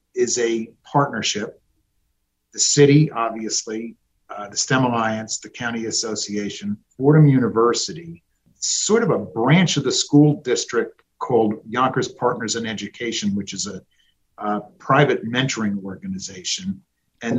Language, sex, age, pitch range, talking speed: English, male, 50-69, 105-145 Hz, 125 wpm